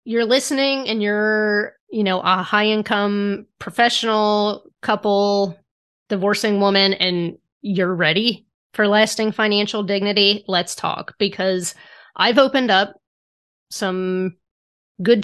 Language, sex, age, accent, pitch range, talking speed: English, female, 30-49, American, 185-225 Hz, 110 wpm